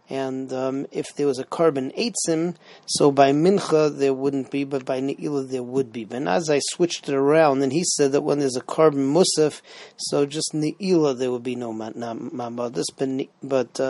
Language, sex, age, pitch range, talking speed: English, male, 40-59, 135-160 Hz, 185 wpm